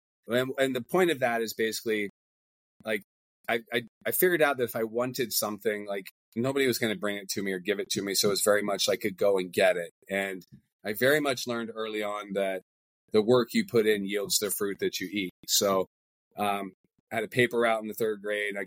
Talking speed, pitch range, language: 245 wpm, 100-125 Hz, English